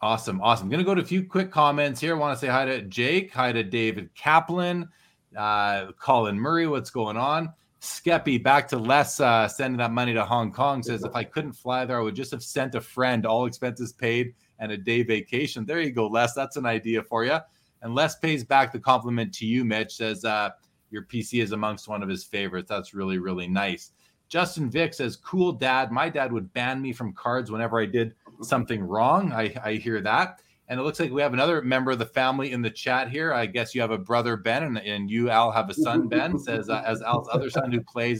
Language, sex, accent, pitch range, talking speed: English, male, American, 110-135 Hz, 235 wpm